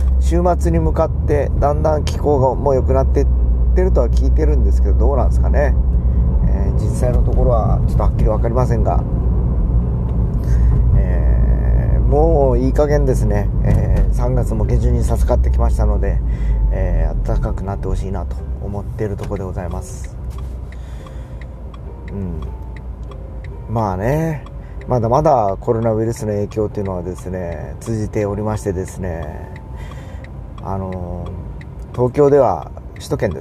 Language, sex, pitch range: Japanese, male, 65-110 Hz